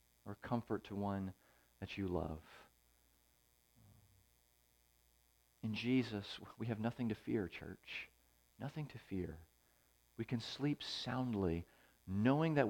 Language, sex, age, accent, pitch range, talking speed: English, male, 50-69, American, 80-125 Hz, 115 wpm